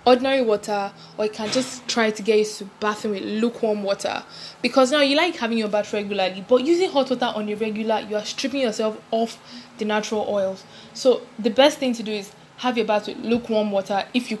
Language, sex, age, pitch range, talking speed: English, female, 10-29, 205-245 Hz, 220 wpm